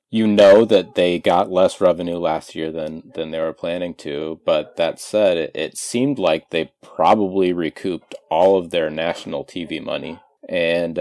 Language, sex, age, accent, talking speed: English, male, 30-49, American, 175 wpm